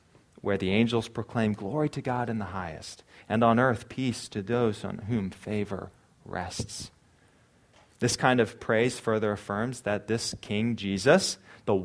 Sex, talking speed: male, 155 wpm